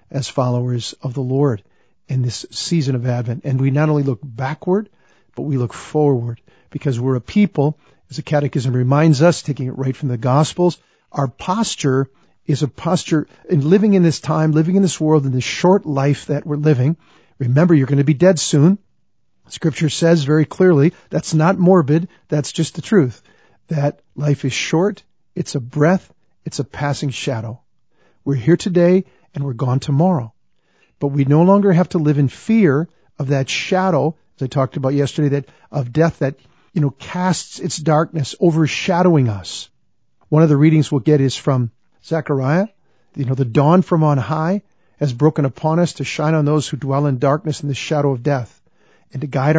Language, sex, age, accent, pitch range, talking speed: English, male, 50-69, American, 135-165 Hz, 190 wpm